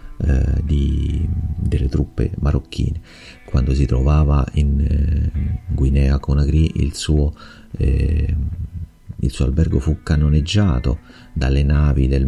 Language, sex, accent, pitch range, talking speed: Italian, male, native, 70-85 Hz, 105 wpm